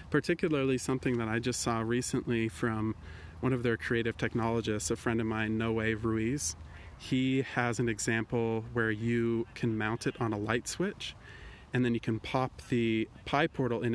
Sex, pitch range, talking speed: male, 110-125 Hz, 175 wpm